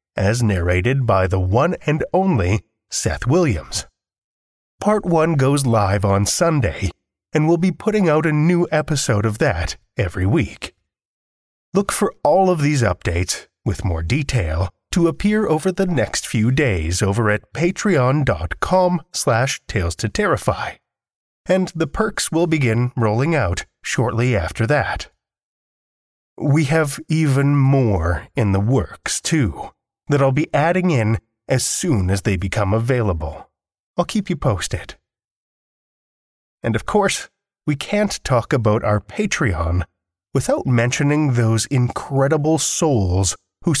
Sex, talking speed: male, 135 wpm